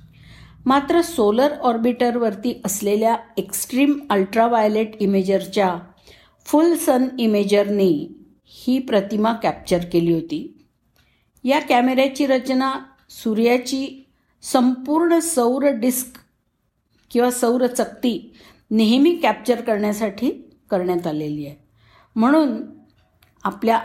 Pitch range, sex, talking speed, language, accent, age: 190-255 Hz, female, 85 wpm, Marathi, native, 50-69